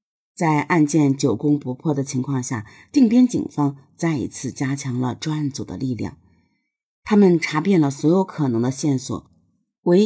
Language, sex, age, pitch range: Chinese, female, 50-69, 125-170 Hz